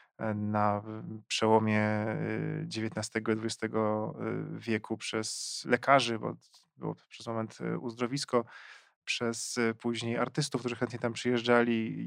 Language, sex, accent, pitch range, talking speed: Polish, male, native, 110-125 Hz, 105 wpm